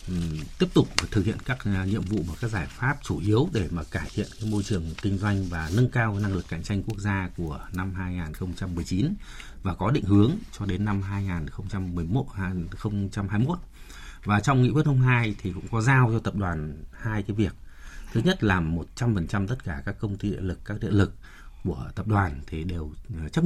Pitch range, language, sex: 90-115 Hz, Vietnamese, male